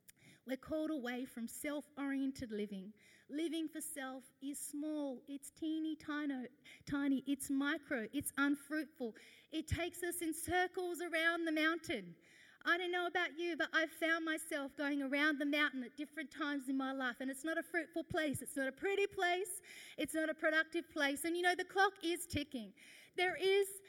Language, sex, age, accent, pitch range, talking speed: English, female, 30-49, Australian, 285-340 Hz, 180 wpm